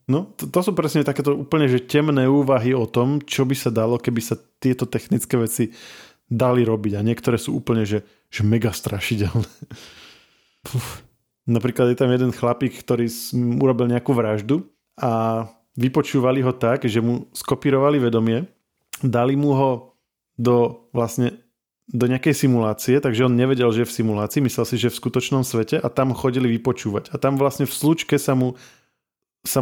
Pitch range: 115-135 Hz